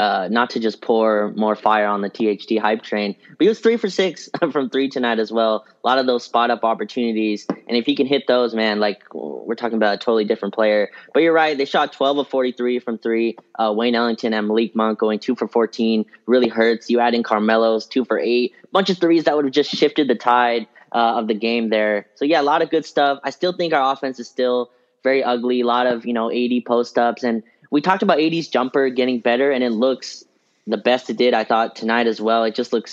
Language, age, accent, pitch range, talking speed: English, 20-39, American, 110-125 Hz, 245 wpm